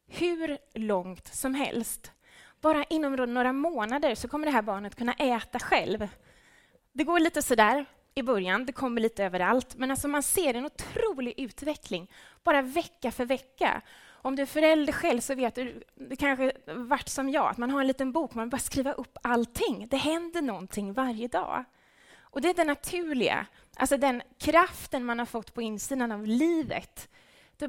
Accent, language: Norwegian, Swedish